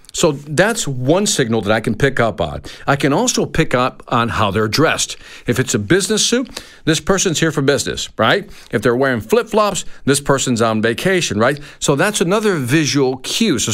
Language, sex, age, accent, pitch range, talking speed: English, male, 50-69, American, 130-190 Hz, 195 wpm